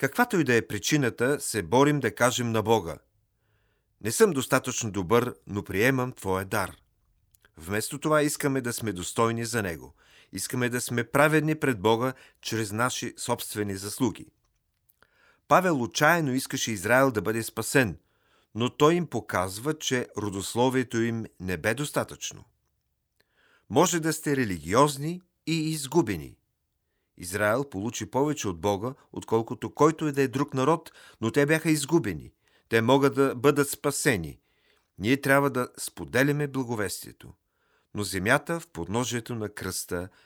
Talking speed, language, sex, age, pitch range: 135 wpm, Bulgarian, male, 40-59, 105-140 Hz